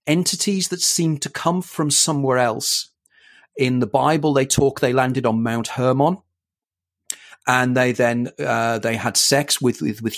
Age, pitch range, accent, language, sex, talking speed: 40-59, 120-155 Hz, British, English, male, 165 wpm